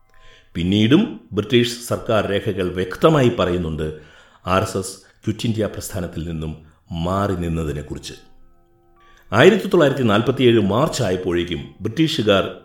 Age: 60-79